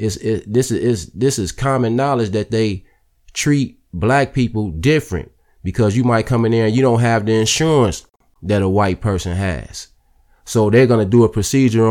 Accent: American